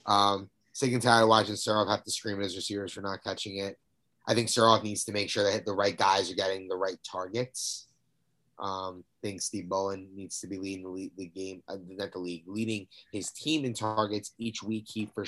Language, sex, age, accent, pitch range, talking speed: English, male, 30-49, American, 105-120 Hz, 235 wpm